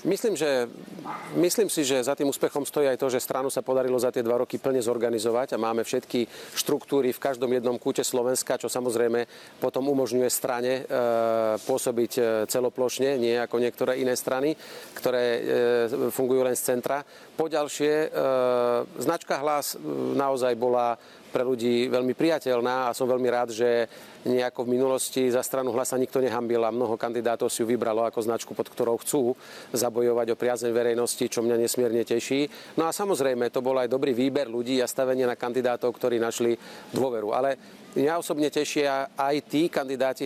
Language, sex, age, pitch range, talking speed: Slovak, male, 40-59, 120-135 Hz, 170 wpm